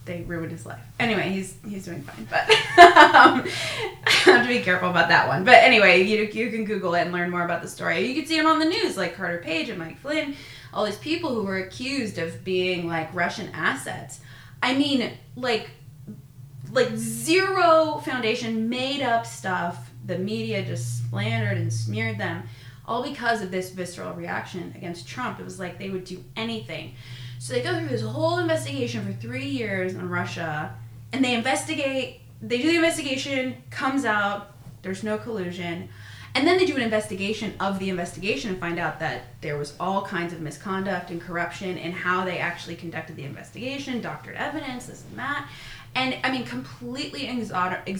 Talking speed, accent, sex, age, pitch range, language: 185 wpm, American, female, 20-39, 145-235 Hz, English